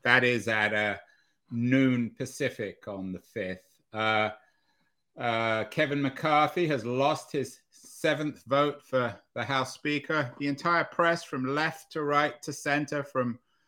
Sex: male